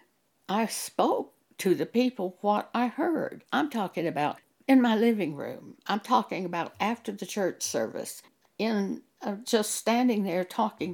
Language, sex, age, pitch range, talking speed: English, female, 60-79, 170-235 Hz, 155 wpm